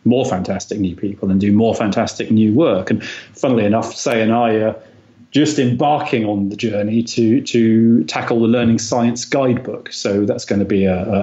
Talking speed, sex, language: 185 wpm, male, English